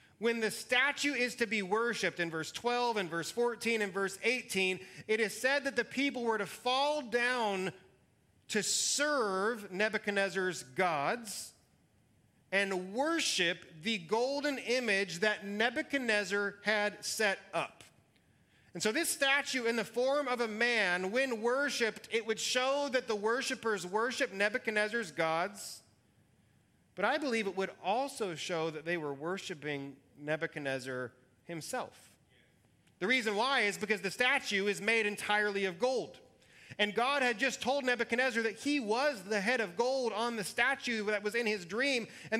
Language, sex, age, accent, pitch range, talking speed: English, male, 30-49, American, 195-250 Hz, 155 wpm